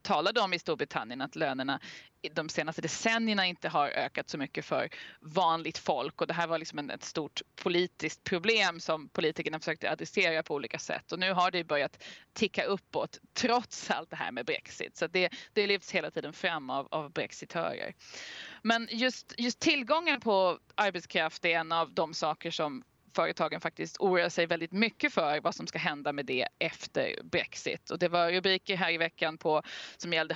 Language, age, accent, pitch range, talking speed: Swedish, 20-39, native, 160-195 Hz, 185 wpm